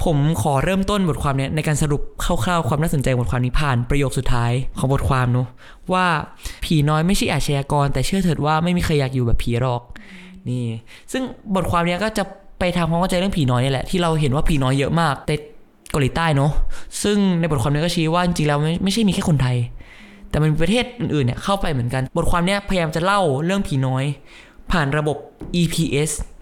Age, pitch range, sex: 20-39, 140-175 Hz, male